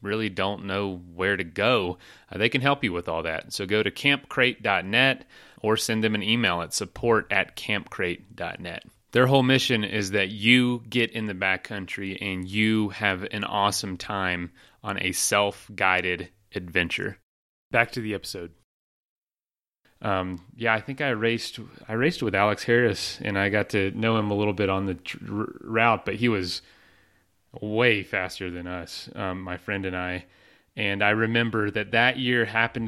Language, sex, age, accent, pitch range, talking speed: English, male, 30-49, American, 95-115 Hz, 170 wpm